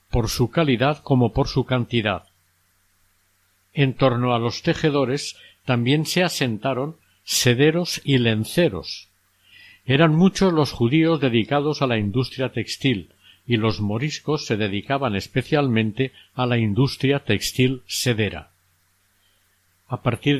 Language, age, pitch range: Spanish, 50-69, 105-140 Hz